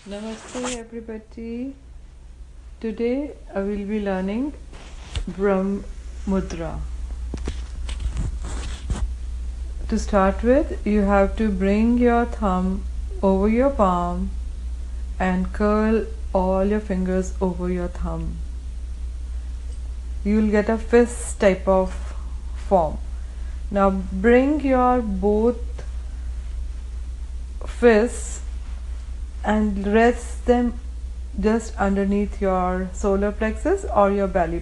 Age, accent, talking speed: 40-59, Indian, 90 wpm